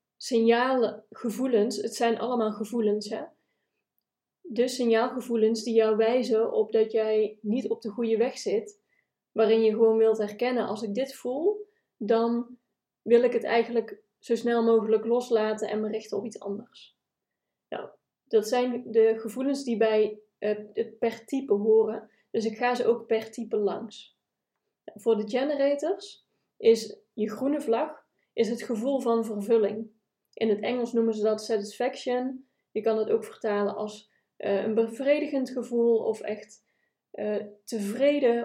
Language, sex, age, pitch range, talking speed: Dutch, female, 20-39, 215-255 Hz, 145 wpm